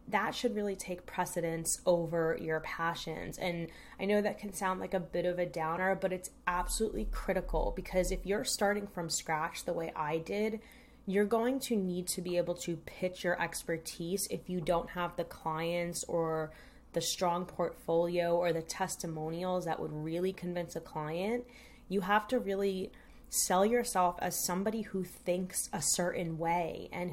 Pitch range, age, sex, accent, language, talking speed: 170-200 Hz, 20-39, female, American, English, 175 wpm